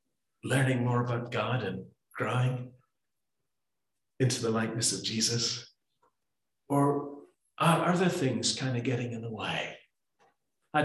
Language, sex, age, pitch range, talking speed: English, male, 50-69, 115-135 Hz, 120 wpm